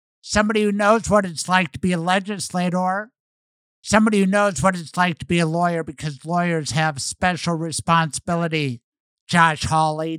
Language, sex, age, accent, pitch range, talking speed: English, male, 60-79, American, 150-185 Hz, 160 wpm